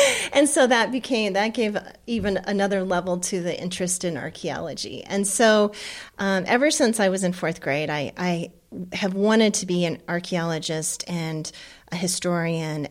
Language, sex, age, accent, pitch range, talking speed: English, female, 30-49, American, 165-200 Hz, 165 wpm